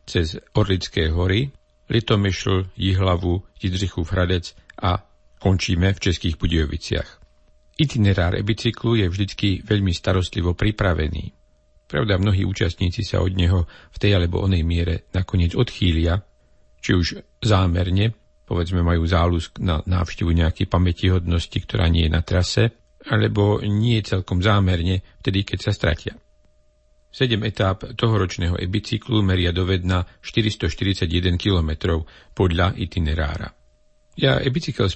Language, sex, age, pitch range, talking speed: Slovak, male, 50-69, 85-105 Hz, 120 wpm